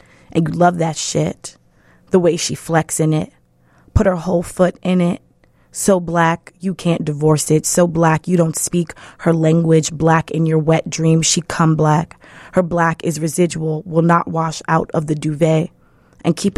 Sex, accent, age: female, American, 20-39